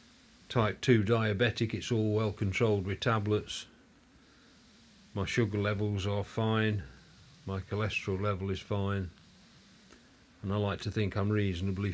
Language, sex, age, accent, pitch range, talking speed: English, male, 40-59, British, 95-110 Hz, 130 wpm